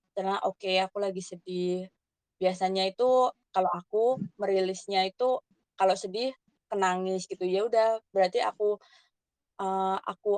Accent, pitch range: native, 185-220 Hz